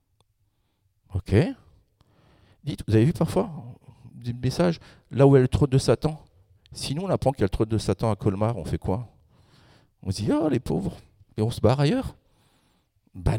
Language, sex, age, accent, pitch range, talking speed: French, male, 50-69, French, 105-130 Hz, 195 wpm